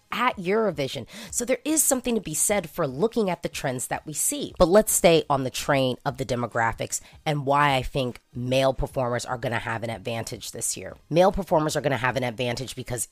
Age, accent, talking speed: 30-49, American, 215 wpm